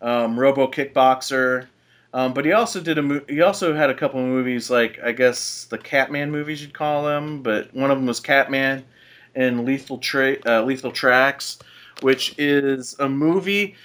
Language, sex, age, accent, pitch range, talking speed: English, male, 30-49, American, 120-140 Hz, 180 wpm